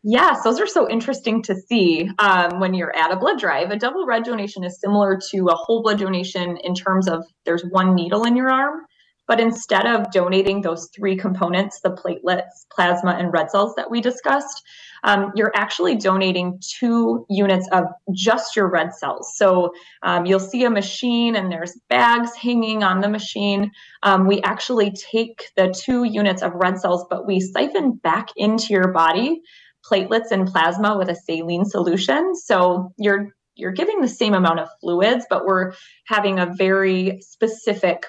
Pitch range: 180-215 Hz